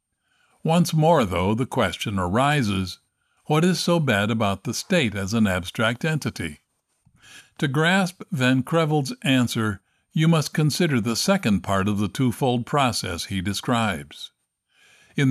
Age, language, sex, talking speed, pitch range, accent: 60-79, English, male, 135 wpm, 110-155 Hz, American